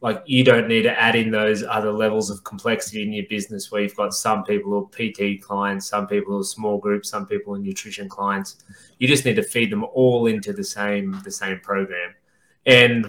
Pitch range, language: 105-130 Hz, English